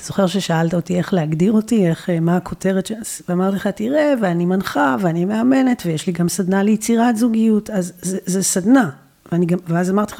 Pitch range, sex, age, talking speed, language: 165-205 Hz, female, 40-59, 180 wpm, Hebrew